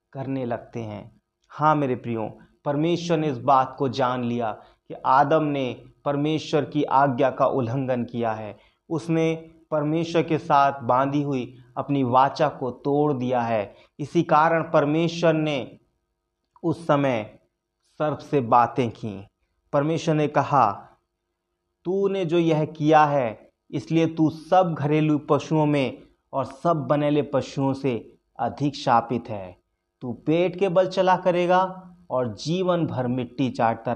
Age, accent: 30-49, native